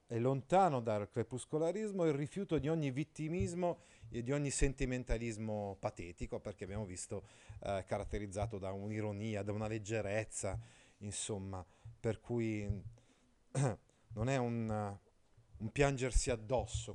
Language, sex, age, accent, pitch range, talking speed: Italian, male, 30-49, native, 105-135 Hz, 120 wpm